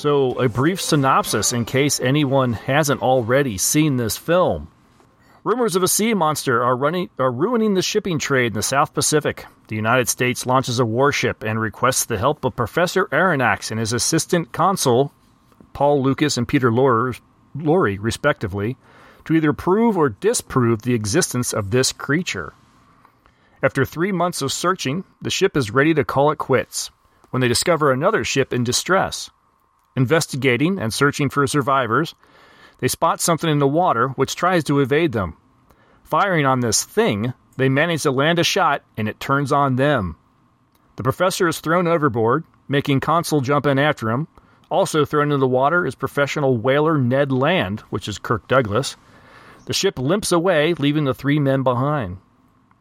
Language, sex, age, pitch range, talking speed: English, male, 40-59, 125-155 Hz, 165 wpm